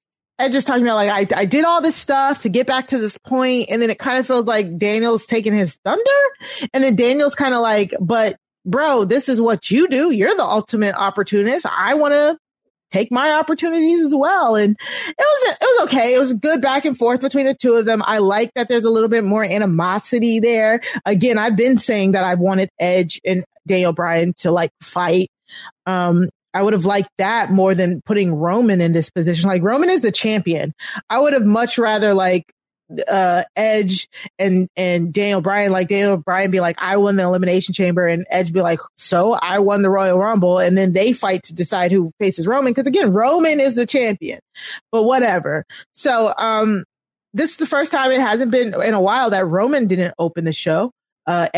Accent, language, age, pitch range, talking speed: American, English, 30-49, 185-250 Hz, 210 wpm